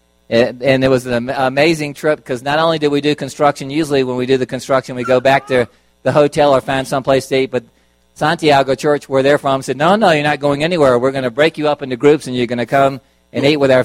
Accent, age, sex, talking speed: American, 50-69, male, 260 wpm